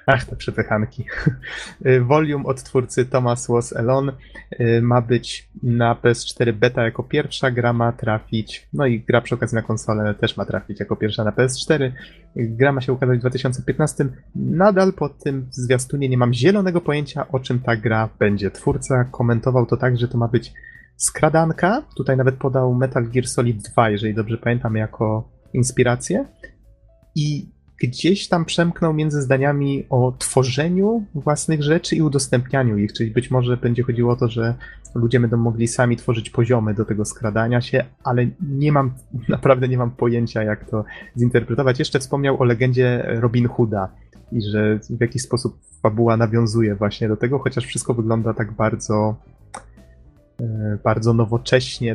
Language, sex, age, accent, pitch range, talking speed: Polish, male, 20-39, native, 115-135 Hz, 160 wpm